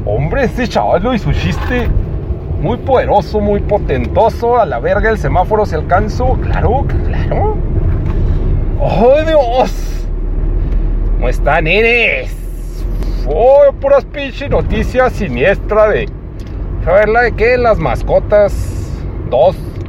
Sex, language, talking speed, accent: male, Spanish, 110 wpm, Mexican